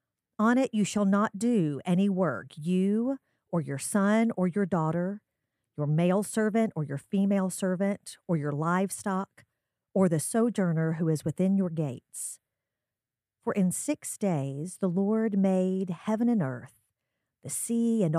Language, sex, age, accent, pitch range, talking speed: English, female, 50-69, American, 150-200 Hz, 150 wpm